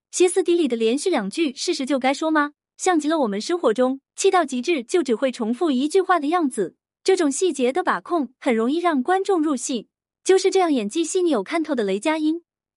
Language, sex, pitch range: Chinese, female, 250-345 Hz